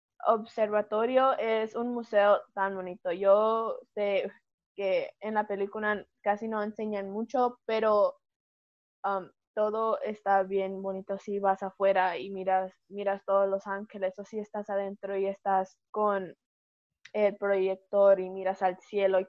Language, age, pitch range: Spanish, 20-39, 195-225 Hz